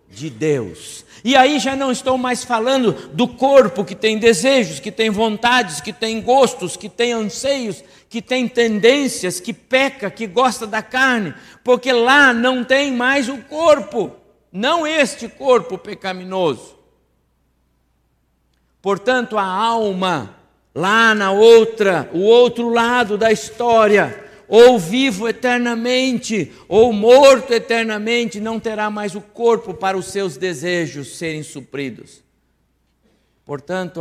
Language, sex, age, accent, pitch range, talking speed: Portuguese, male, 60-79, Brazilian, 140-230 Hz, 125 wpm